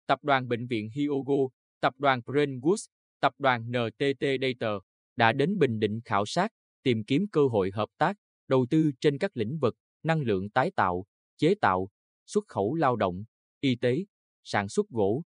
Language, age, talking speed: Vietnamese, 20-39, 175 wpm